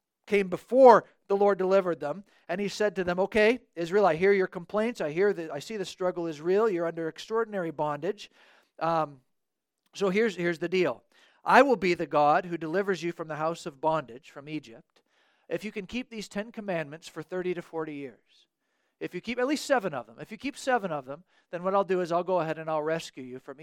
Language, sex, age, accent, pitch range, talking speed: English, male, 50-69, American, 160-210 Hz, 230 wpm